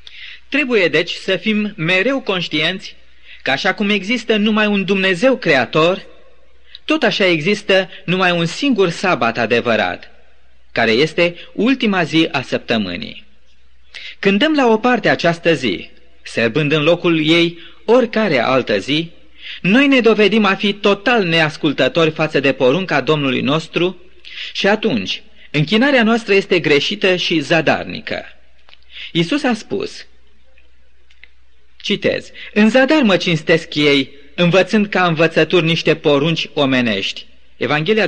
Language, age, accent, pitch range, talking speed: Romanian, 30-49, native, 145-210 Hz, 120 wpm